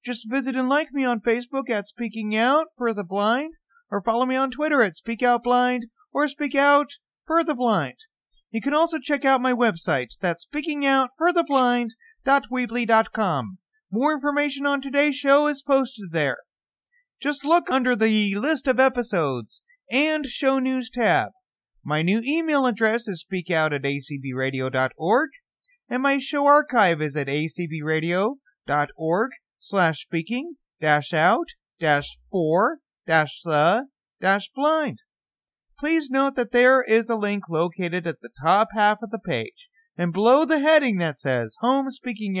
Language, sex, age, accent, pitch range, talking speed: English, male, 40-59, American, 180-285 Hz, 140 wpm